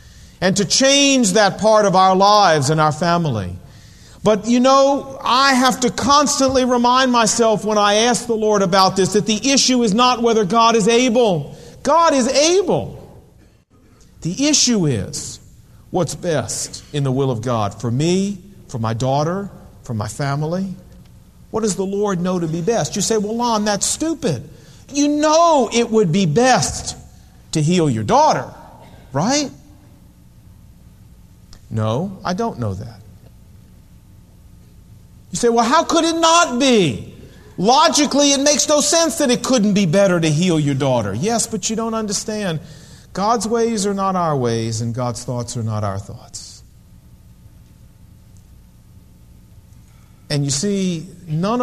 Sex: male